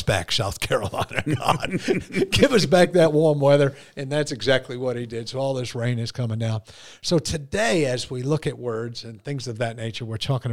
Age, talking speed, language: 50-69, 205 wpm, English